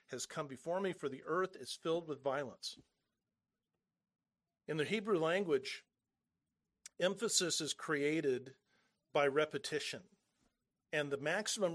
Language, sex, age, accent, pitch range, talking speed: English, male, 50-69, American, 145-190 Hz, 115 wpm